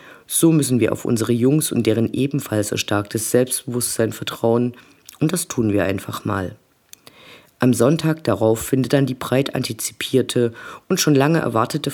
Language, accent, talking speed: German, German, 150 wpm